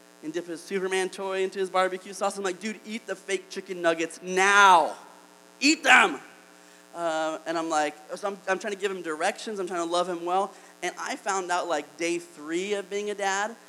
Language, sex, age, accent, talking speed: English, male, 30-49, American, 210 wpm